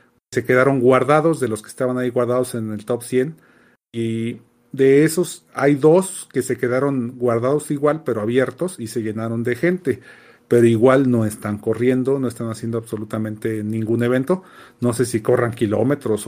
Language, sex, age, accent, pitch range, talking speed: Spanish, male, 40-59, Mexican, 115-140 Hz, 170 wpm